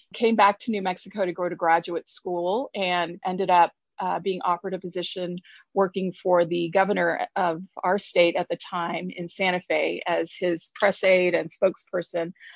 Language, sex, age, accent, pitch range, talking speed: English, female, 30-49, American, 170-200 Hz, 175 wpm